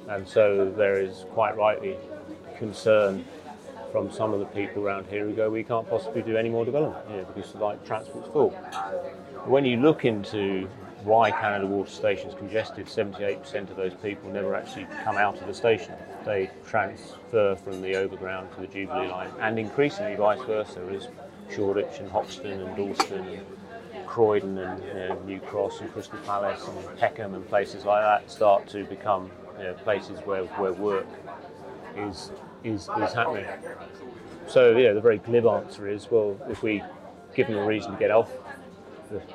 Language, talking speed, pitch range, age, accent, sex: English, 175 wpm, 100-120 Hz, 30-49, British, male